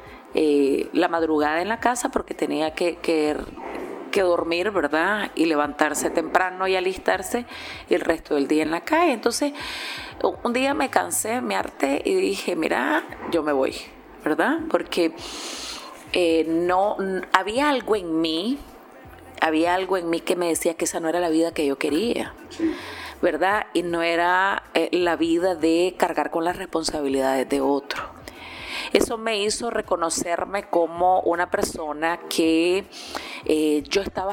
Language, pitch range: Spanish, 160-225 Hz